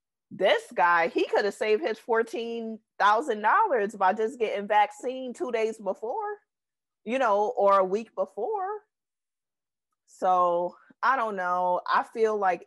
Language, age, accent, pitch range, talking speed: English, 30-49, American, 150-210 Hz, 135 wpm